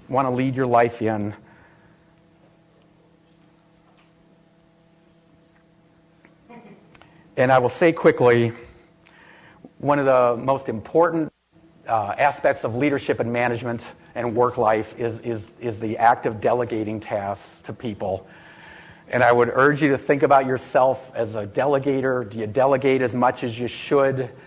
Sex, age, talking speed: male, 50-69, 135 wpm